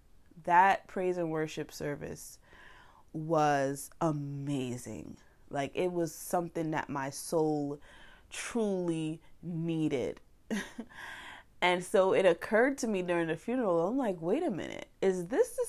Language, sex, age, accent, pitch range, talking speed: English, female, 20-39, American, 150-210 Hz, 125 wpm